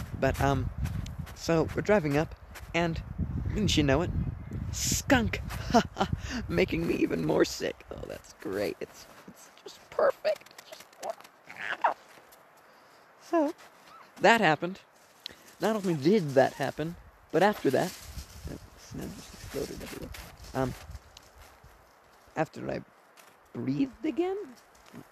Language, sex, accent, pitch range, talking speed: English, male, American, 130-190 Hz, 105 wpm